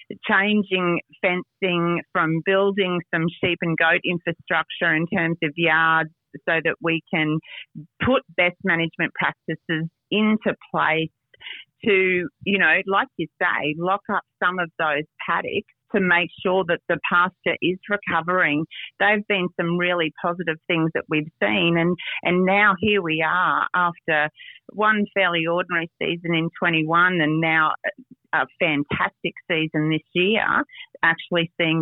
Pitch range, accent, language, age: 160-185 Hz, Australian, English, 40-59